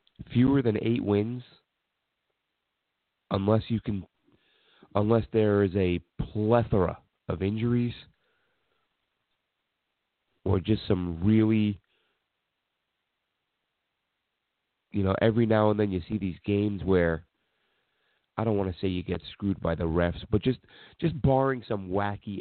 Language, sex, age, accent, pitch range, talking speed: English, male, 30-49, American, 90-110 Hz, 125 wpm